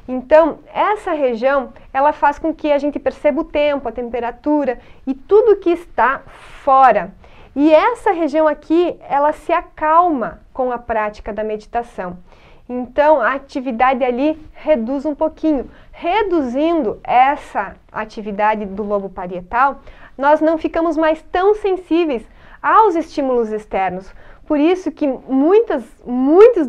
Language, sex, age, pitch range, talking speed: English, female, 30-49, 245-325 Hz, 130 wpm